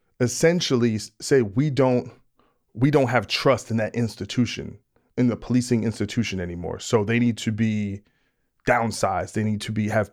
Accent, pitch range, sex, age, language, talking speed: American, 105-135 Hz, male, 40-59, English, 160 wpm